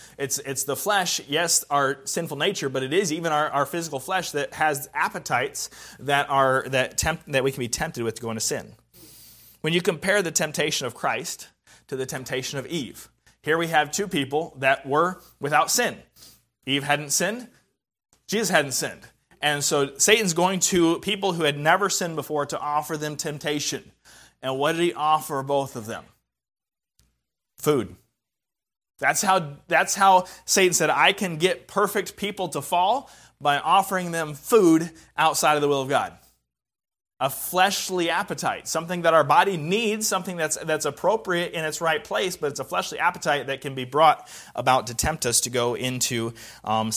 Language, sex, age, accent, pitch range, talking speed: English, male, 30-49, American, 130-170 Hz, 180 wpm